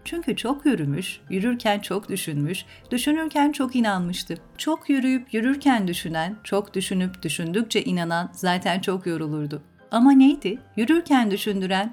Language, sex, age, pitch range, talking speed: Turkish, female, 40-59, 175-245 Hz, 120 wpm